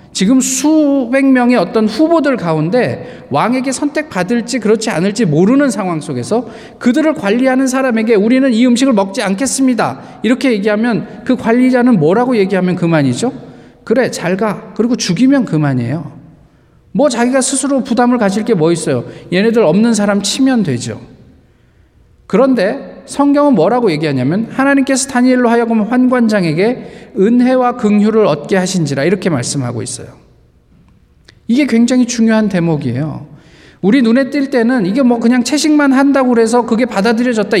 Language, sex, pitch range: Korean, male, 185-255 Hz